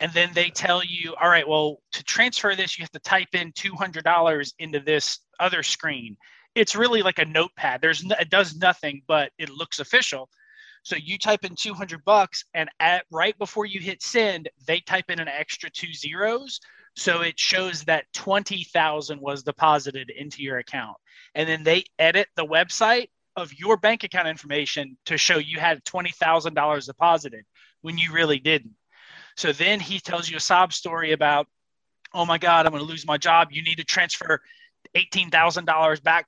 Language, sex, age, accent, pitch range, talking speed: English, male, 30-49, American, 155-195 Hz, 185 wpm